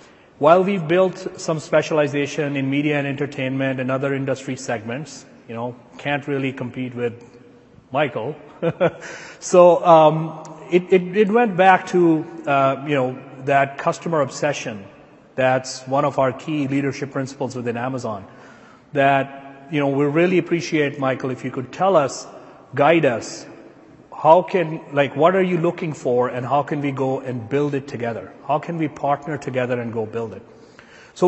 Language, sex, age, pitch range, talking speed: English, male, 30-49, 130-155 Hz, 160 wpm